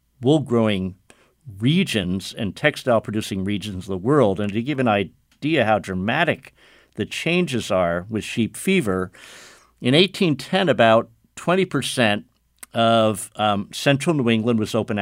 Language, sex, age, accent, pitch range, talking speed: English, male, 50-69, American, 105-135 Hz, 130 wpm